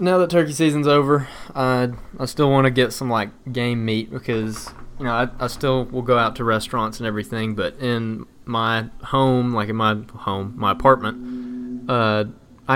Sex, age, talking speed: male, 20-39, 185 wpm